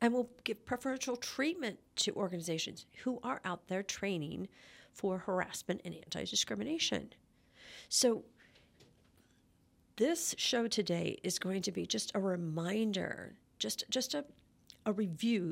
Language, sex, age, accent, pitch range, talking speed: English, female, 50-69, American, 180-240 Hz, 125 wpm